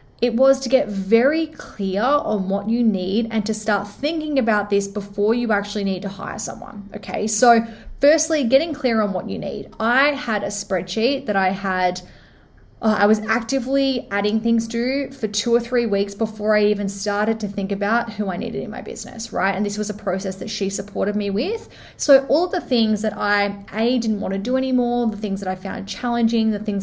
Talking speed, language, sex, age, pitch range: 210 wpm, English, female, 20-39, 195-235 Hz